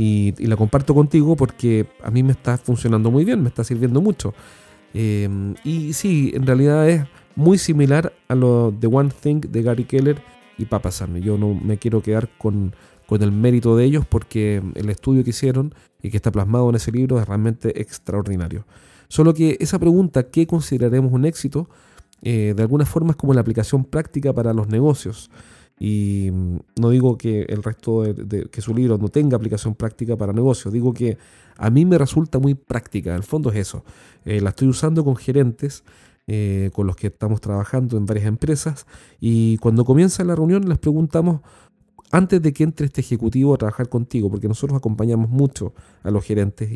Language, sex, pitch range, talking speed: Spanish, male, 105-140 Hz, 190 wpm